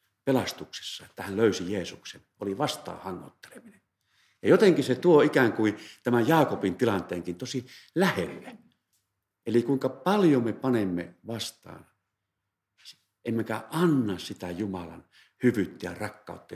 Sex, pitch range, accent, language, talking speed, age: male, 95-120 Hz, native, Finnish, 115 wpm, 50-69